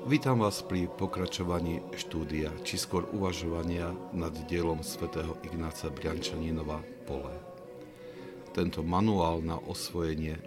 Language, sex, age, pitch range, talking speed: Slovak, male, 50-69, 65-85 Hz, 105 wpm